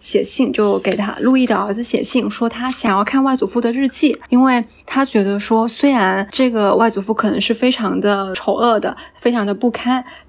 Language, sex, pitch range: Chinese, female, 210-255 Hz